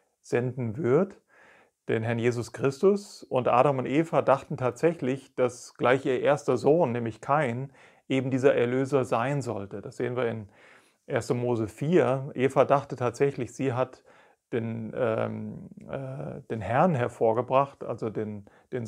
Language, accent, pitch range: German, German, 120-140 Hz